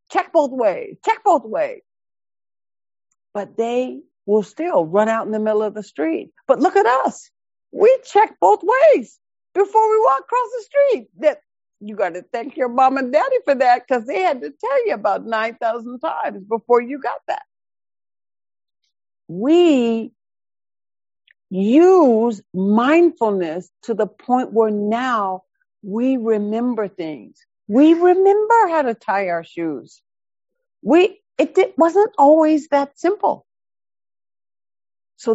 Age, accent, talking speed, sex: 60-79, American, 140 wpm, female